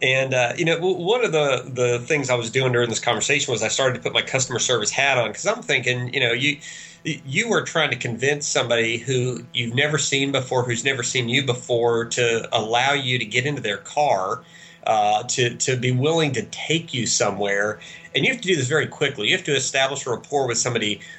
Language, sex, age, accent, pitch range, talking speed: English, male, 40-59, American, 120-145 Hz, 225 wpm